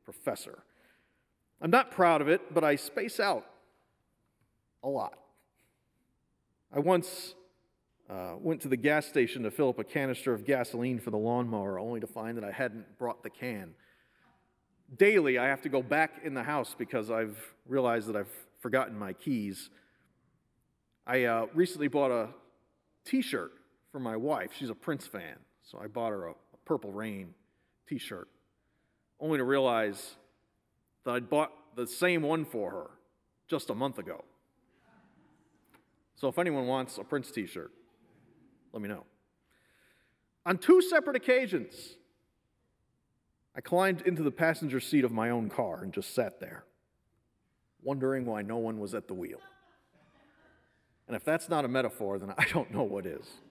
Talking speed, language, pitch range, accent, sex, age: 155 wpm, English, 115-165 Hz, American, male, 40-59